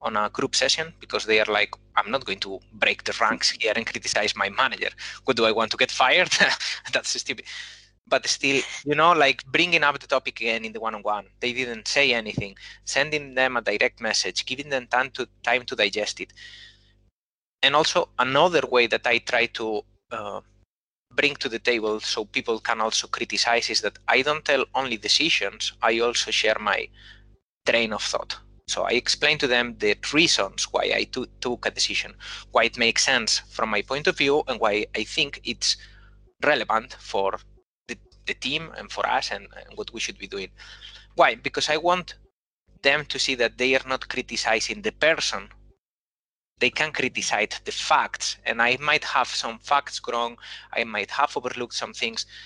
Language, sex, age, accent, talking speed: English, male, 20-39, Spanish, 190 wpm